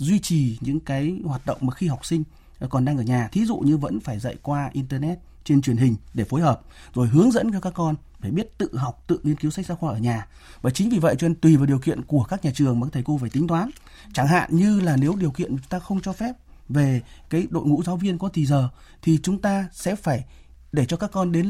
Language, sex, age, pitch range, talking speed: Vietnamese, male, 30-49, 125-170 Hz, 270 wpm